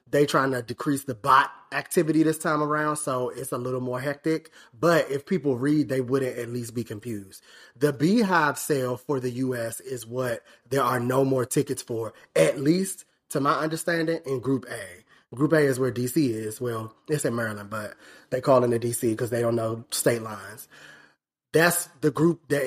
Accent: American